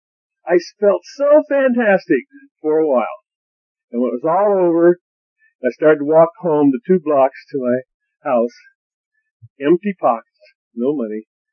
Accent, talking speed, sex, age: American, 145 wpm, male, 50-69